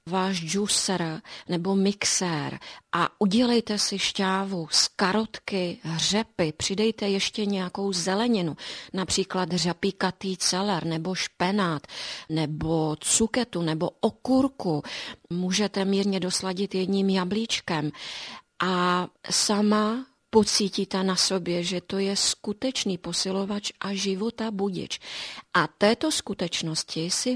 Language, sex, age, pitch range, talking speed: Czech, female, 40-59, 180-220 Hz, 100 wpm